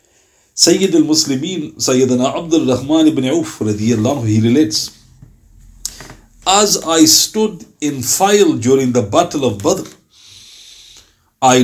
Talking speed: 110 wpm